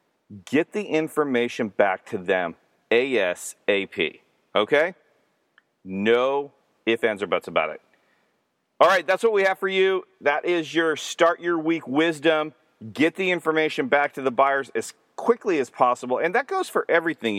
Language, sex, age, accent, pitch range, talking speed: English, male, 40-59, American, 125-170 Hz, 160 wpm